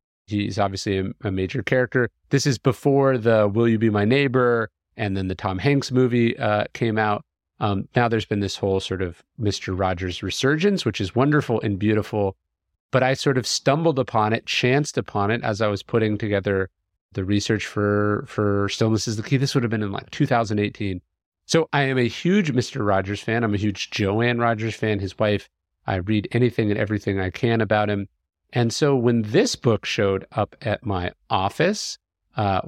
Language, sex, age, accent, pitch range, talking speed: English, male, 30-49, American, 100-125 Hz, 195 wpm